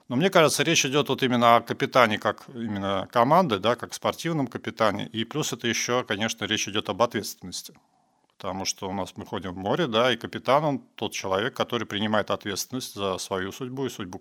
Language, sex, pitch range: Russian, male, 100-125 Hz